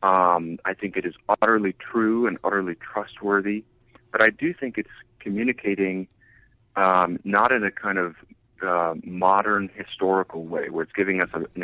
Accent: American